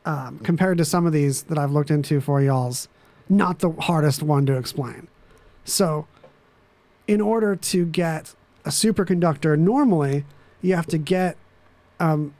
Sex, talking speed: male, 150 wpm